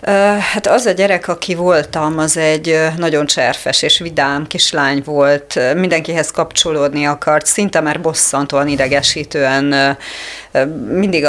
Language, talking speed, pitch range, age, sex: Hungarian, 115 wpm, 145-175 Hz, 30-49, female